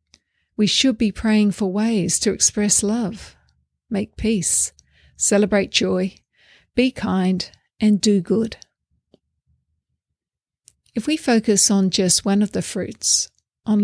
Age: 50-69